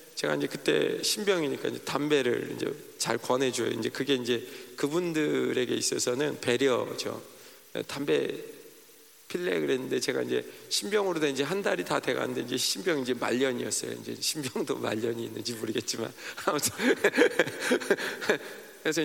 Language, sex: Korean, male